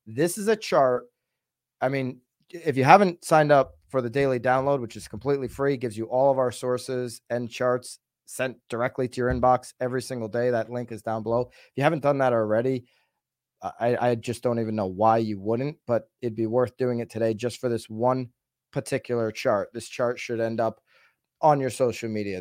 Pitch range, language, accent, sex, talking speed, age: 115-145 Hz, English, American, male, 205 wpm, 30-49